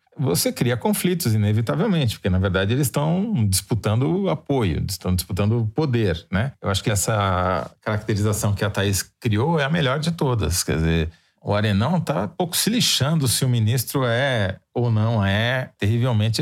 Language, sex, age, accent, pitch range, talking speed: Portuguese, male, 40-59, Brazilian, 110-150 Hz, 170 wpm